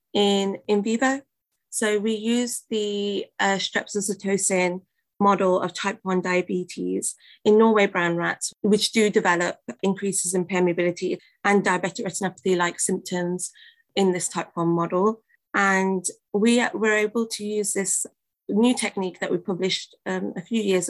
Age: 20-39